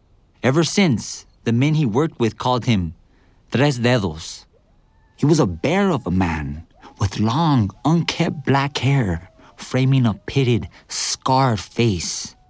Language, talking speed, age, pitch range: English, 135 wpm, 50-69, 100-155 Hz